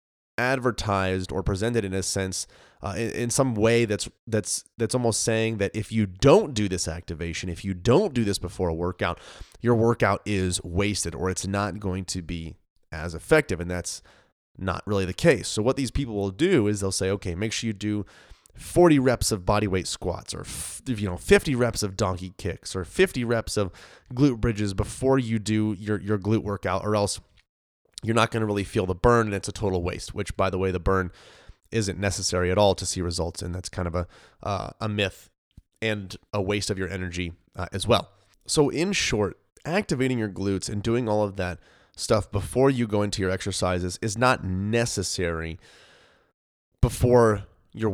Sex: male